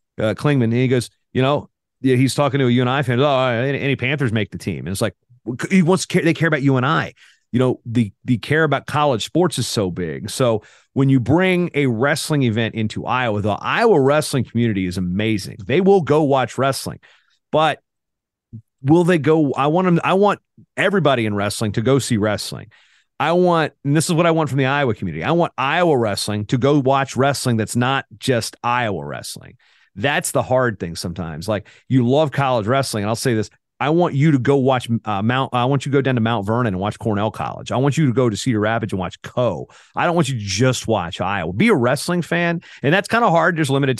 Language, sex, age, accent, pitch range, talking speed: English, male, 30-49, American, 110-145 Hz, 230 wpm